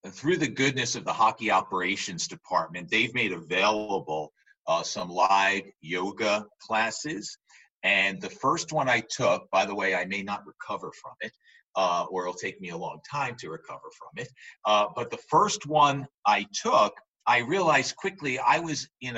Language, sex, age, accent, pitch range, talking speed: English, male, 50-69, American, 110-150 Hz, 180 wpm